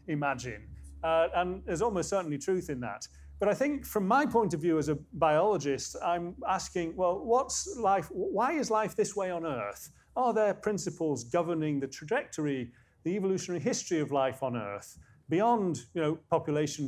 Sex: male